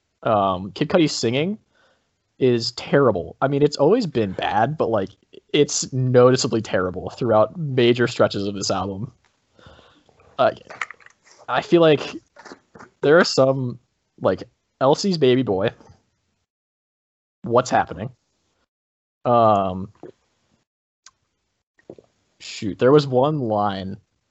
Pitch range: 100-135 Hz